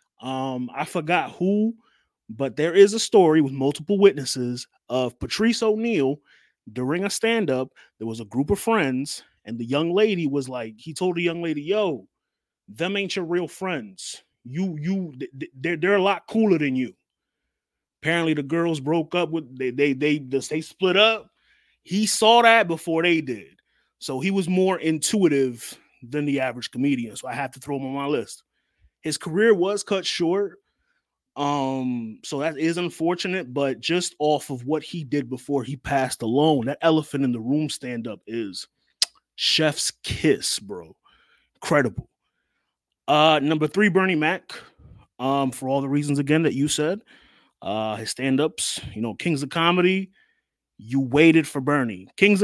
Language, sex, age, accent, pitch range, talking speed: English, male, 30-49, American, 135-185 Hz, 165 wpm